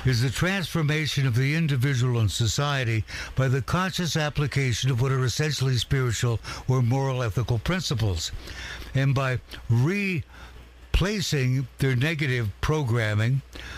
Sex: male